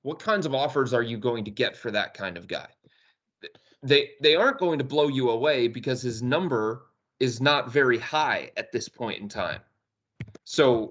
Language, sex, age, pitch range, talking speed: English, male, 30-49, 120-150 Hz, 195 wpm